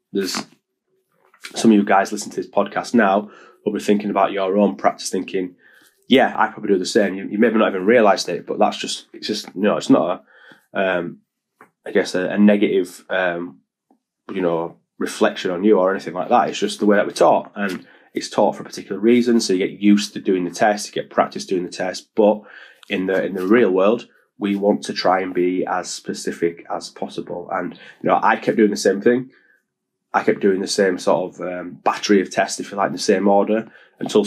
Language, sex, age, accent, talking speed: English, male, 20-39, British, 230 wpm